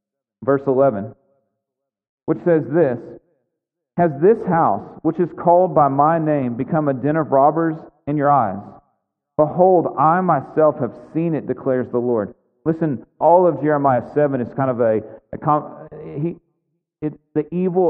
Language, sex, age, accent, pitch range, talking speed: English, male, 40-59, American, 130-165 Hz, 155 wpm